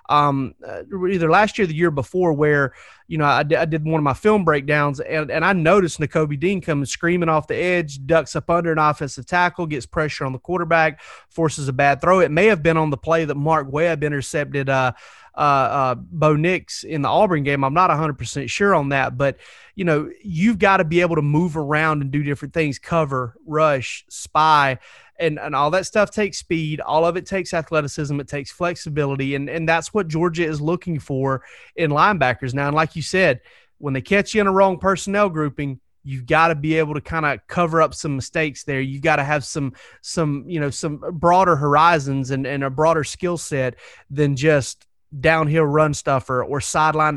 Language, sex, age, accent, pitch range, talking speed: English, male, 30-49, American, 145-170 Hz, 210 wpm